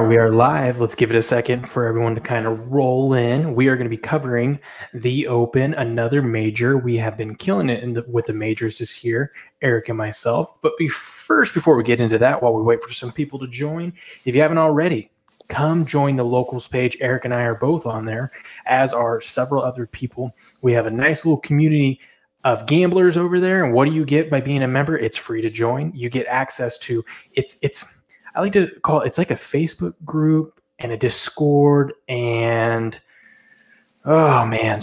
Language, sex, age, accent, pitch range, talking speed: English, male, 20-39, American, 115-145 Hz, 205 wpm